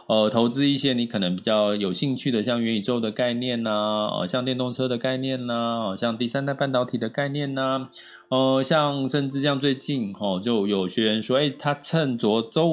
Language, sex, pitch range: Chinese, male, 110-145 Hz